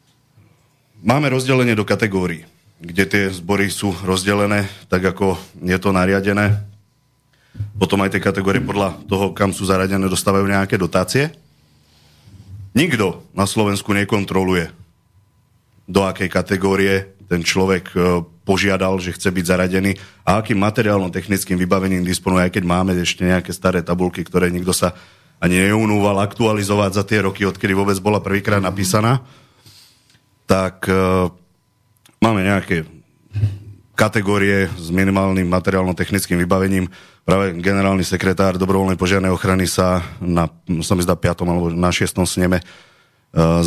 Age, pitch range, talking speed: 30-49, 90-105 Hz, 125 wpm